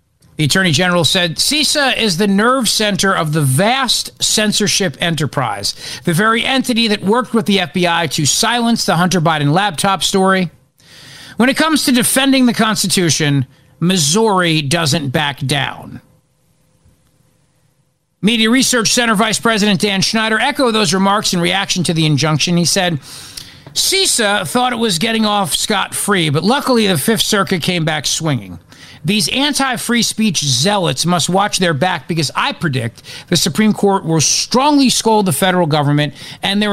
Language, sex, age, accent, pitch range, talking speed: English, male, 50-69, American, 155-215 Hz, 155 wpm